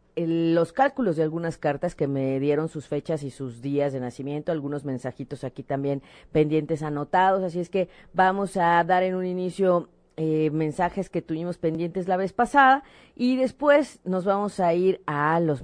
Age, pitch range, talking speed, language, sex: 40-59, 155-215 Hz, 175 wpm, Spanish, female